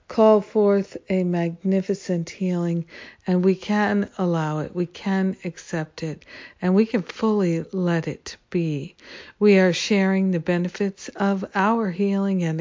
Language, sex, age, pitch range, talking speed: English, female, 60-79, 170-200 Hz, 145 wpm